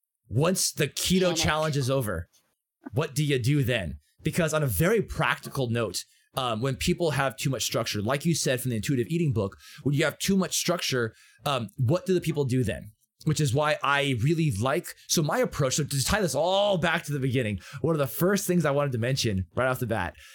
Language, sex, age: English, male, 20-39